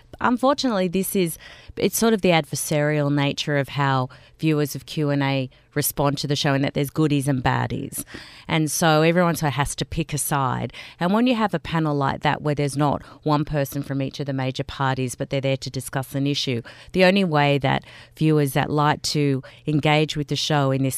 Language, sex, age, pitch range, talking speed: English, female, 30-49, 140-170 Hz, 205 wpm